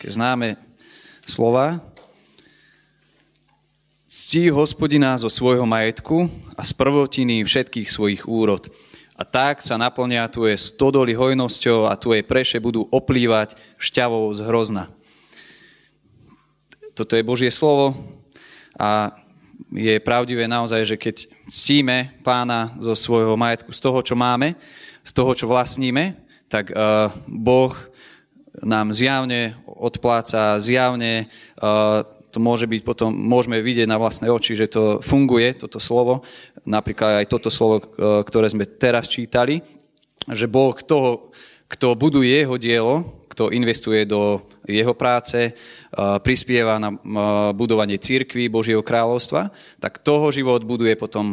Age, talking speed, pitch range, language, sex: 20-39, 120 wpm, 110-130 Hz, Slovak, male